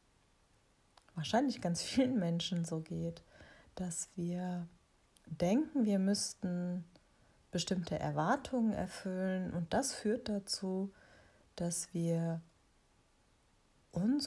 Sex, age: female, 30-49